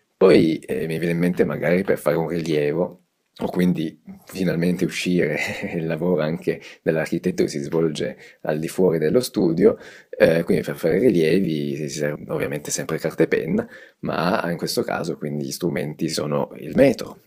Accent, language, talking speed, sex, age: native, Italian, 170 wpm, male, 30-49